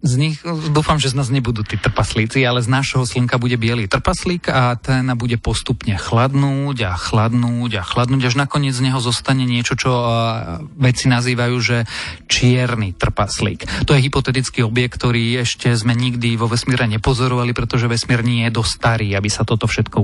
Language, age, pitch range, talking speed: Slovak, 30-49, 115-130 Hz, 175 wpm